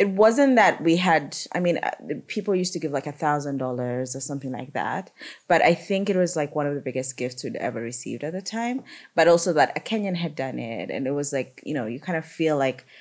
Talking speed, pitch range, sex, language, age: 245 wpm, 130-170 Hz, female, English, 30-49